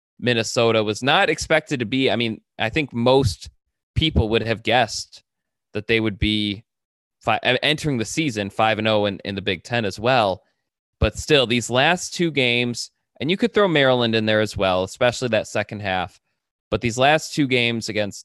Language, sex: English, male